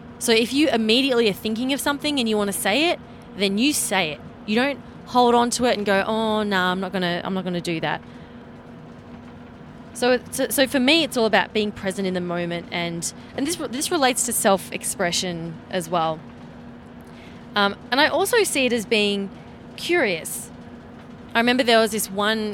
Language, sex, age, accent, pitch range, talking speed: English, female, 20-39, Australian, 195-250 Hz, 190 wpm